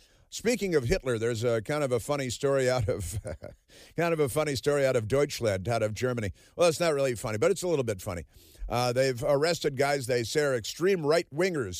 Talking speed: 225 wpm